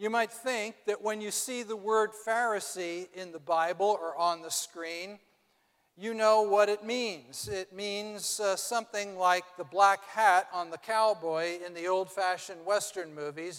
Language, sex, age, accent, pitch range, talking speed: English, male, 50-69, American, 170-210 Hz, 170 wpm